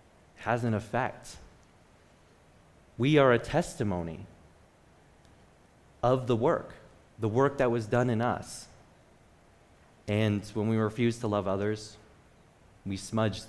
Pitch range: 95-120 Hz